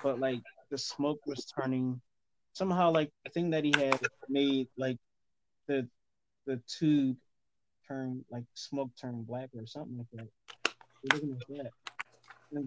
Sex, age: male, 20-39